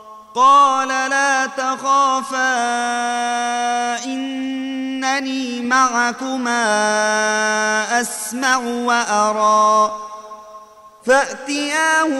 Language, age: Arabic, 30-49